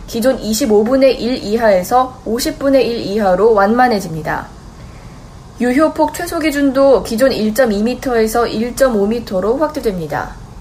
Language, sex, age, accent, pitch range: Korean, female, 20-39, native, 215-275 Hz